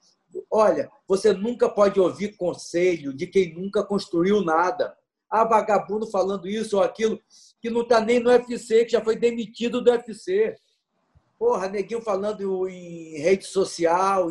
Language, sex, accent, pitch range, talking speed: Portuguese, male, Brazilian, 195-240 Hz, 145 wpm